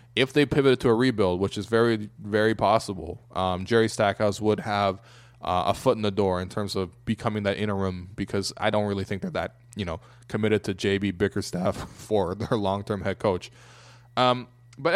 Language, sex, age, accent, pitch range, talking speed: English, male, 20-39, American, 100-120 Hz, 195 wpm